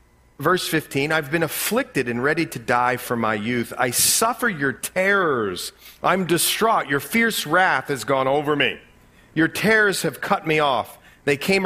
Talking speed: 170 wpm